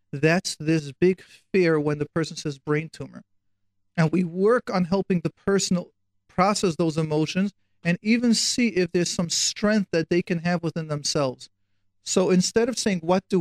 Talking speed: 175 wpm